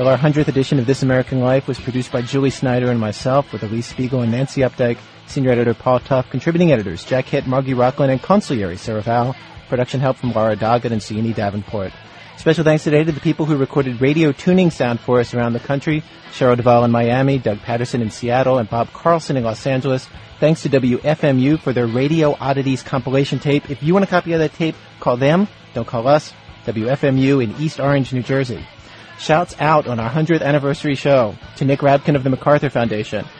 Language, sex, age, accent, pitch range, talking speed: English, male, 40-59, American, 125-145 Hz, 205 wpm